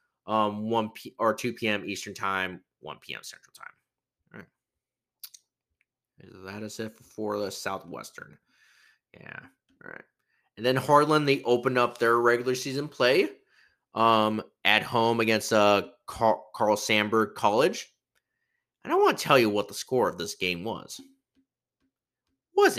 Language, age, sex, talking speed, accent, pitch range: English, 30-49, male, 155 wpm, American, 110-150 Hz